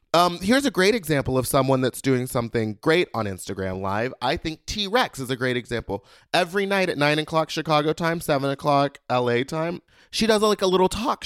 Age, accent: 30-49, American